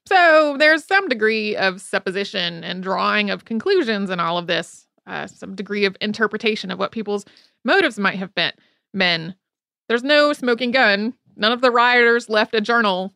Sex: female